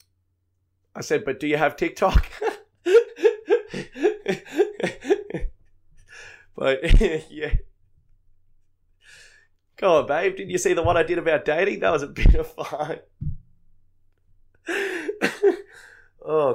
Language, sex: English, male